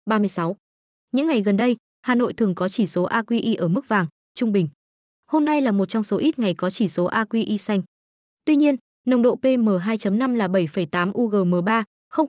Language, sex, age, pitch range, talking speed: Vietnamese, female, 20-39, 200-255 Hz, 190 wpm